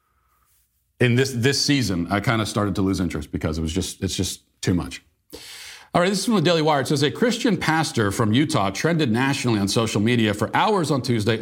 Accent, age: American, 40-59